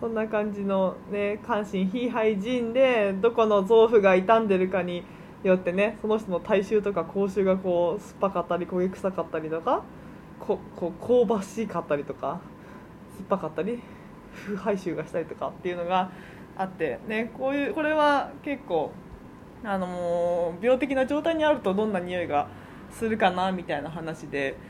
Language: Japanese